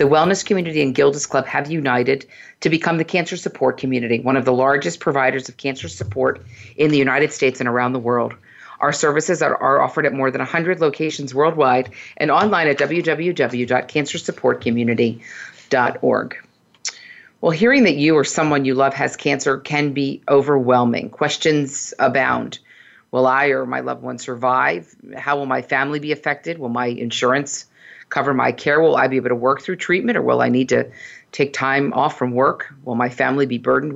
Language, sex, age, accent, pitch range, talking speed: English, female, 40-59, American, 125-155 Hz, 180 wpm